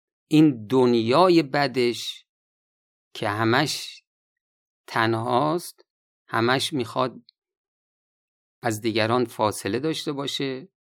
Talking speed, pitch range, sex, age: 70 wpm, 115-160 Hz, male, 50-69